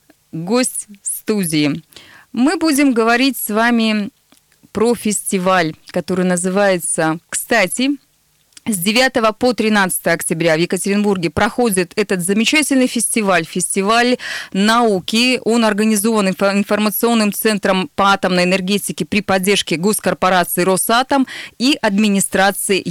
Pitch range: 185-240 Hz